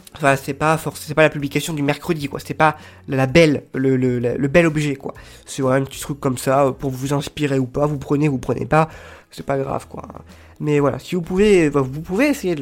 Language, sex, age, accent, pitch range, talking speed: French, male, 20-39, French, 130-155 Hz, 245 wpm